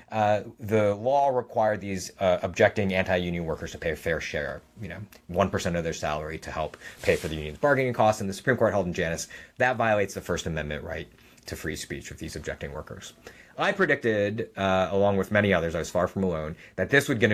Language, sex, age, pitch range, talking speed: English, male, 30-49, 95-125 Hz, 220 wpm